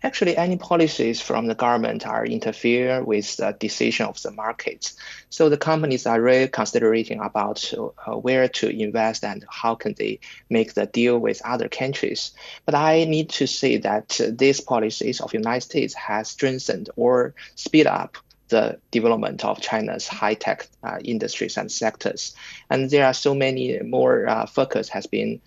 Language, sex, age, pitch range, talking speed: English, male, 20-39, 115-150 Hz, 165 wpm